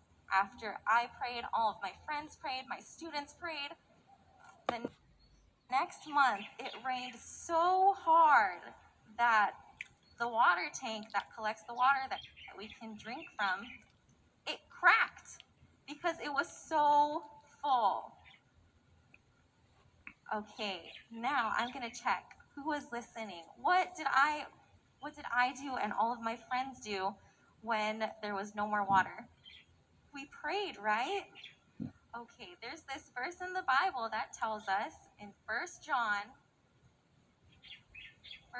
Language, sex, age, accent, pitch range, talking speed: English, female, 20-39, American, 210-295 Hz, 130 wpm